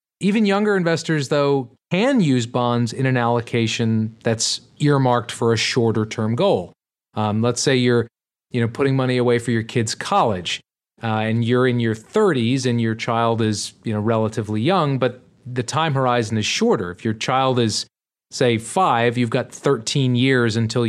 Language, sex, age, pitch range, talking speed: English, male, 30-49, 110-140 Hz, 170 wpm